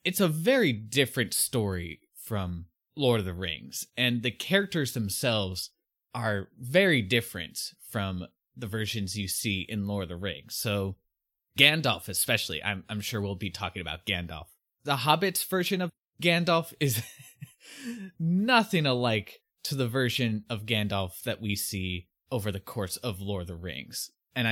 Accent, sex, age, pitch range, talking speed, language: American, male, 20-39, 100-135 Hz, 155 wpm, English